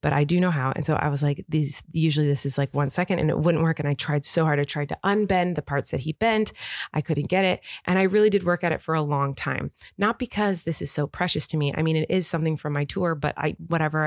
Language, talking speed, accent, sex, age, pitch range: English, 295 wpm, American, female, 20-39, 150-185 Hz